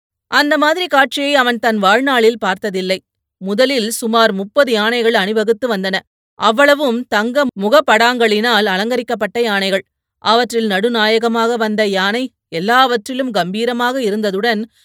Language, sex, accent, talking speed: Tamil, female, native, 100 wpm